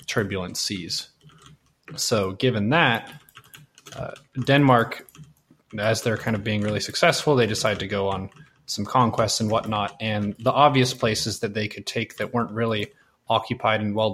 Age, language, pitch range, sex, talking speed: 20-39, English, 100-120 Hz, male, 155 wpm